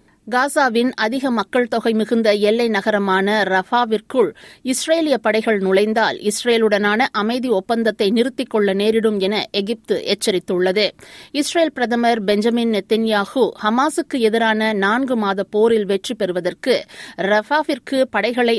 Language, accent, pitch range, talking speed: Tamil, native, 205-245 Hz, 105 wpm